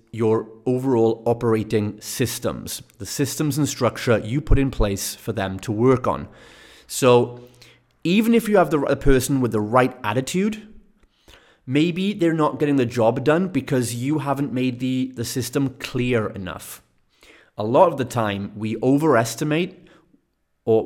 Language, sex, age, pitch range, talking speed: English, male, 30-49, 110-145 Hz, 150 wpm